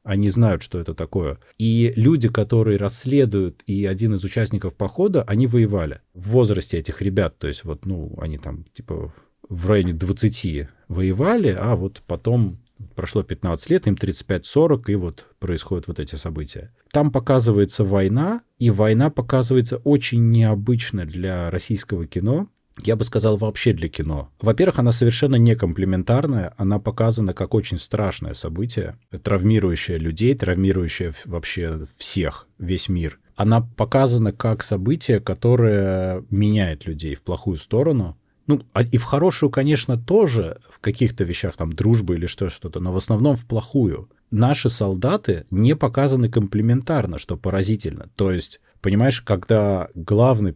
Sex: male